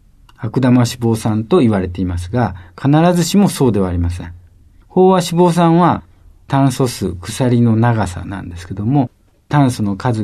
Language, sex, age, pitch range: Japanese, male, 50-69, 95-150 Hz